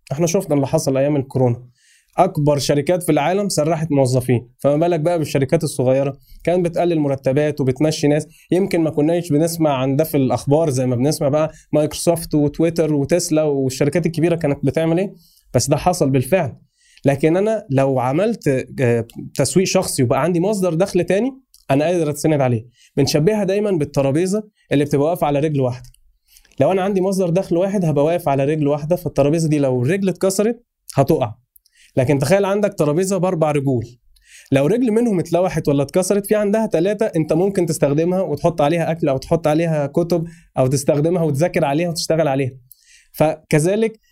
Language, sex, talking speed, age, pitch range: Arabic, male, 160 wpm, 20-39, 140-175 Hz